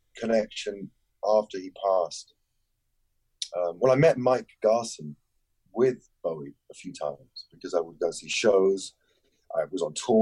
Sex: male